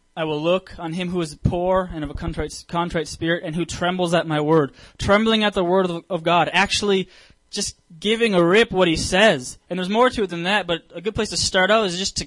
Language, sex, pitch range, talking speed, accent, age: English, male, 160-200 Hz, 250 wpm, American, 20-39